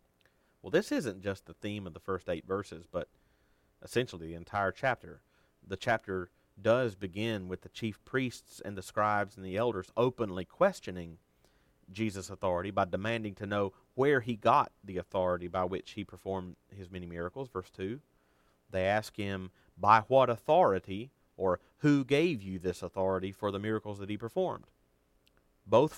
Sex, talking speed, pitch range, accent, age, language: male, 165 wpm, 85-110 Hz, American, 40-59, English